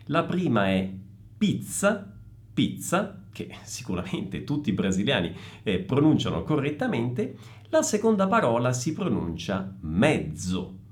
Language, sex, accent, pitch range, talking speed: Italian, male, native, 110-180 Hz, 105 wpm